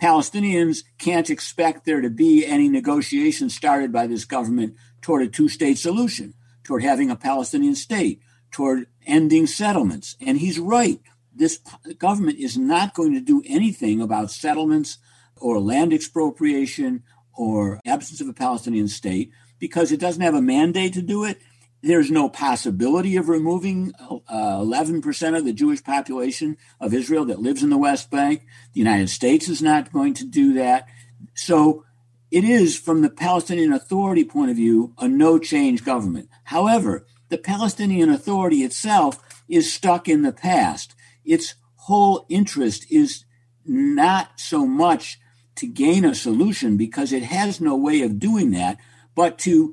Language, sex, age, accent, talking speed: English, male, 50-69, American, 155 wpm